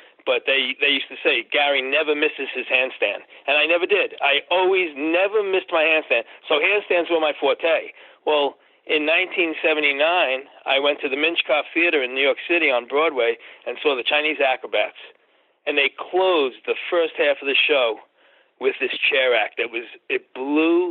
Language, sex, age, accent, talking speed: English, male, 40-59, American, 180 wpm